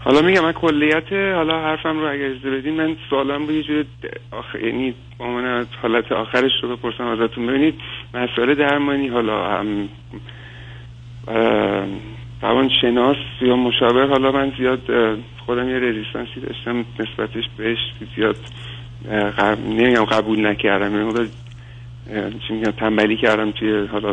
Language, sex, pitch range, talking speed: Persian, male, 110-130 Hz, 120 wpm